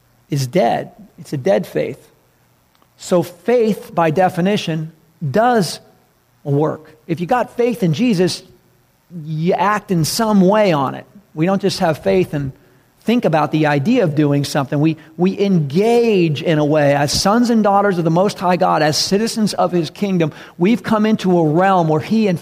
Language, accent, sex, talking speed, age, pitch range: English, American, male, 175 wpm, 40-59, 150-190 Hz